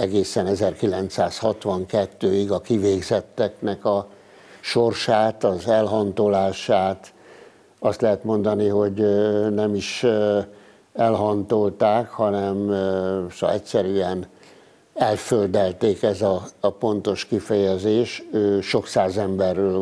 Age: 60-79